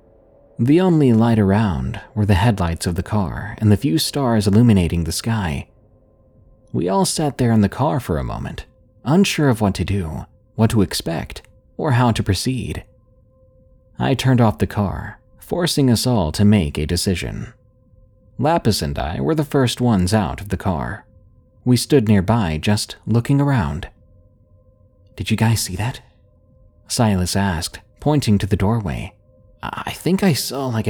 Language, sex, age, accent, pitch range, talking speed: English, male, 30-49, American, 95-120 Hz, 165 wpm